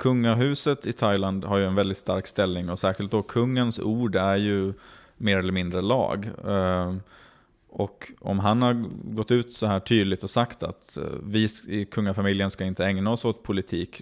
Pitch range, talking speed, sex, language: 95-110 Hz, 175 wpm, male, Swedish